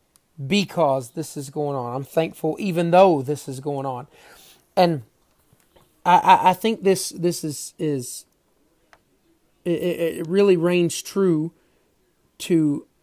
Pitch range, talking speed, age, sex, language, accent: 150-185 Hz, 130 wpm, 30-49, male, English, American